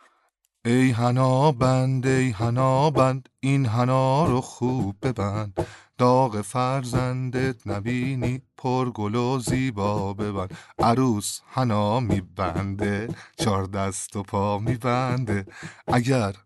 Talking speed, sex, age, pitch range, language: 100 wpm, male, 30-49, 95-130 Hz, Persian